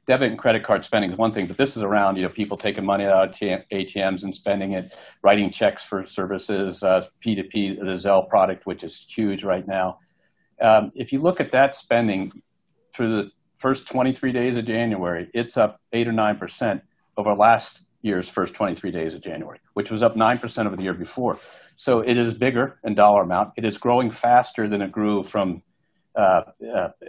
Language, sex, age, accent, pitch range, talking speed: English, male, 50-69, American, 100-115 Hz, 195 wpm